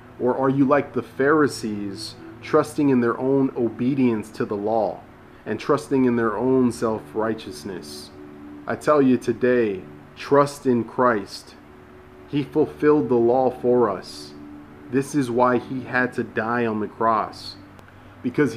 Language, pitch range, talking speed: English, 115-140 Hz, 140 wpm